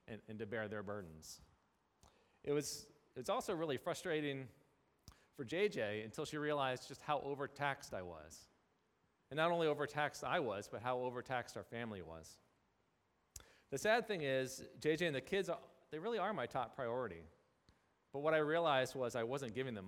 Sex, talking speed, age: male, 175 wpm, 40-59